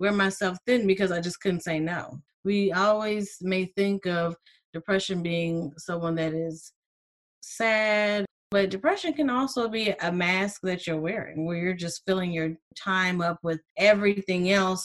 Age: 30-49